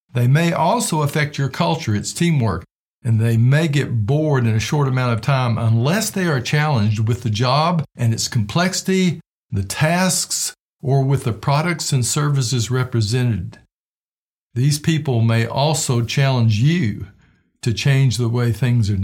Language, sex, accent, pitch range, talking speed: English, male, American, 115-145 Hz, 160 wpm